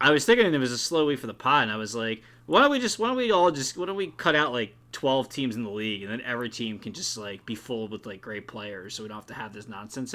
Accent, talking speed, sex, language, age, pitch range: American, 330 wpm, male, English, 20-39, 110-145 Hz